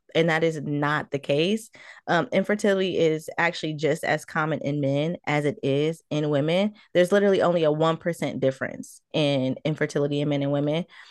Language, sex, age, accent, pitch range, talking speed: English, female, 20-39, American, 155-195 Hz, 175 wpm